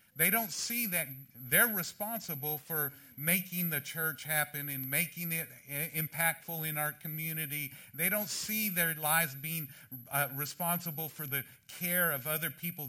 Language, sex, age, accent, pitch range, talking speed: English, male, 50-69, American, 135-190 Hz, 150 wpm